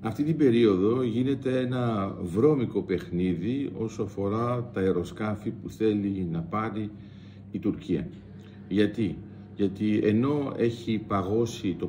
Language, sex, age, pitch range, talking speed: Greek, male, 50-69, 100-120 Hz, 115 wpm